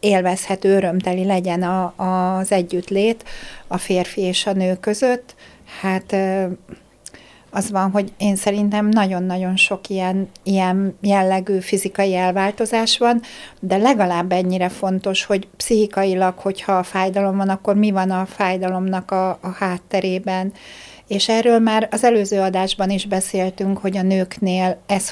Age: 60-79